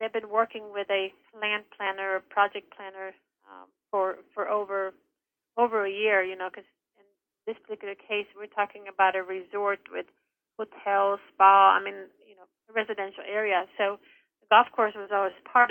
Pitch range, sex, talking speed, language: 190-215 Hz, female, 170 wpm, English